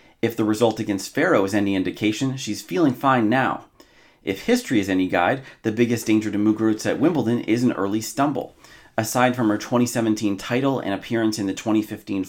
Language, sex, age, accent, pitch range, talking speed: English, male, 30-49, American, 105-130 Hz, 185 wpm